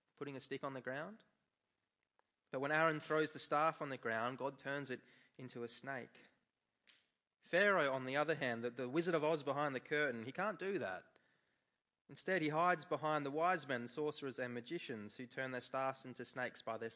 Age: 30-49